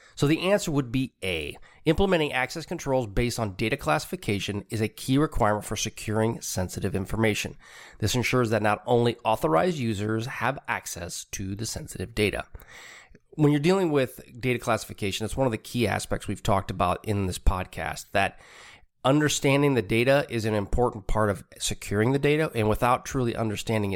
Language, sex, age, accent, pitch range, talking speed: English, male, 30-49, American, 105-135 Hz, 170 wpm